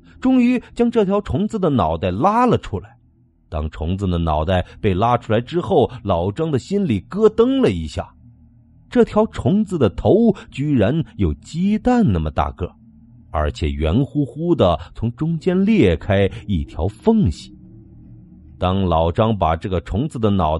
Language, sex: Chinese, male